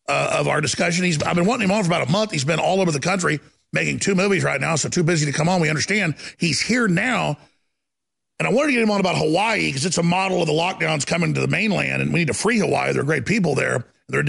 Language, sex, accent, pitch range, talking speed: English, male, American, 160-195 Hz, 285 wpm